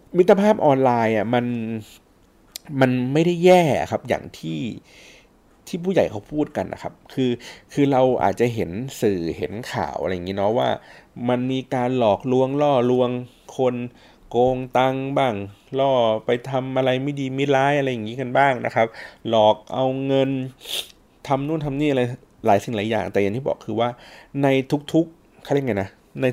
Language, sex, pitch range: Thai, male, 110-140 Hz